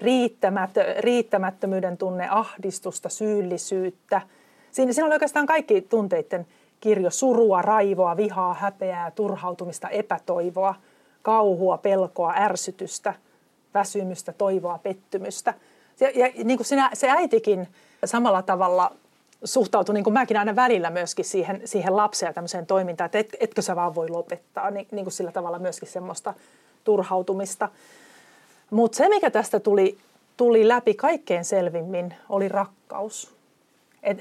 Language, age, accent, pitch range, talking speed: Finnish, 40-59, native, 185-220 Hz, 125 wpm